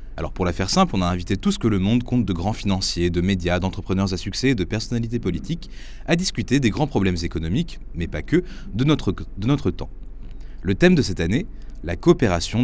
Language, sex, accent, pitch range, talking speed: French, male, French, 90-135 Hz, 215 wpm